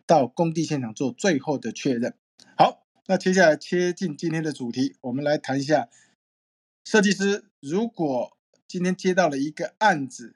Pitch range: 140-195 Hz